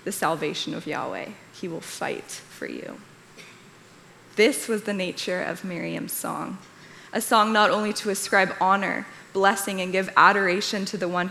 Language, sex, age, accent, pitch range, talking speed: English, female, 10-29, American, 180-210 Hz, 160 wpm